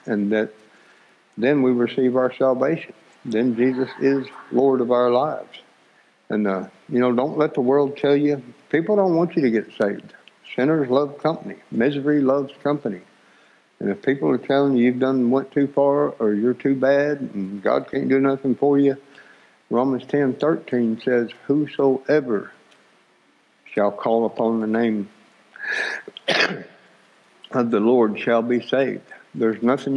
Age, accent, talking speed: 60-79, American, 150 wpm